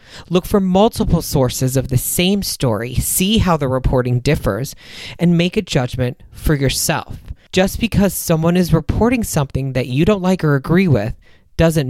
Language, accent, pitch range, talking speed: English, American, 125-165 Hz, 165 wpm